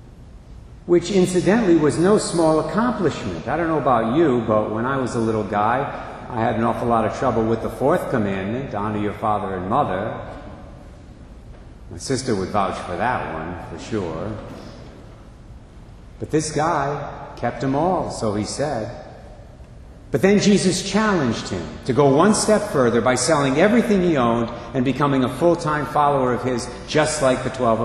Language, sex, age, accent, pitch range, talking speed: English, male, 50-69, American, 110-150 Hz, 170 wpm